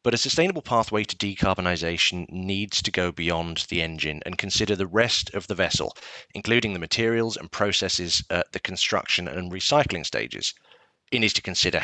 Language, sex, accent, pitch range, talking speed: English, male, British, 90-115 Hz, 170 wpm